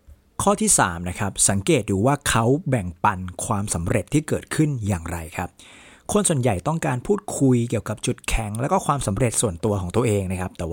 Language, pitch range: Thai, 100-145 Hz